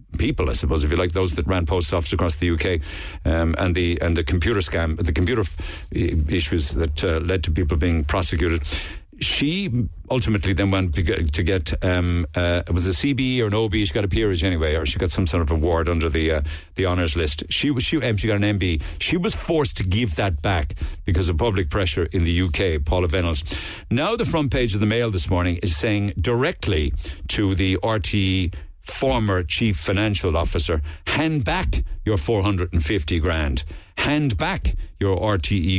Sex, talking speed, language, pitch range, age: male, 200 wpm, English, 80-105 Hz, 60-79